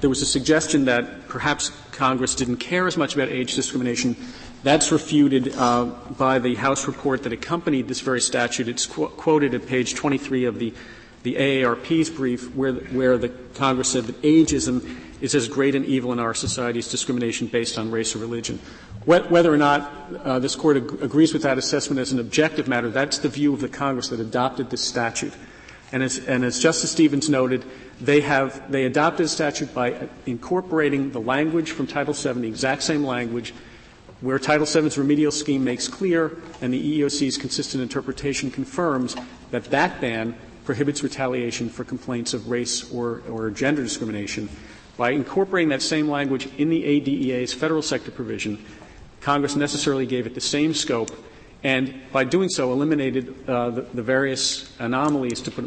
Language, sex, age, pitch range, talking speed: English, male, 40-59, 120-145 Hz, 180 wpm